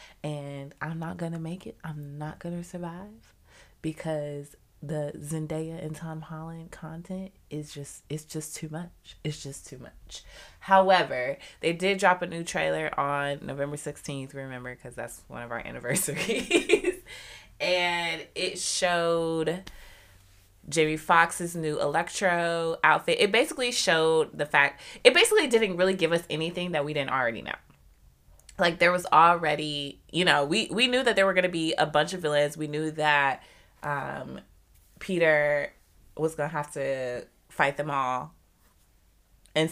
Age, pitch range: 20-39, 140-170 Hz